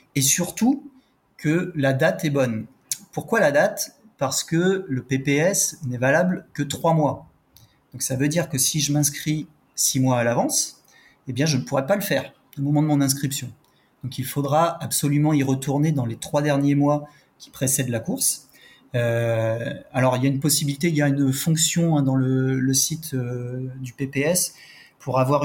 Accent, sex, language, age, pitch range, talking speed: French, male, French, 30-49, 130-160 Hz, 185 wpm